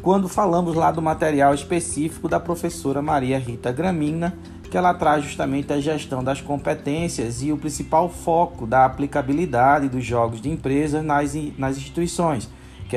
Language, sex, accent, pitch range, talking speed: Portuguese, male, Brazilian, 125-170 Hz, 150 wpm